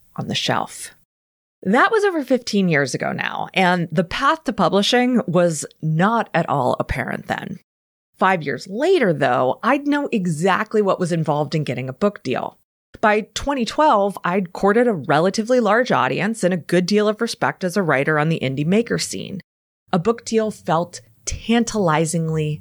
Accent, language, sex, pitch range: American, English, female, 160-230 Hz